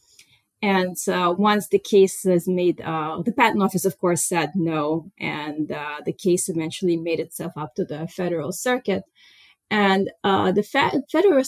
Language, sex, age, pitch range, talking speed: English, female, 30-49, 170-195 Hz, 160 wpm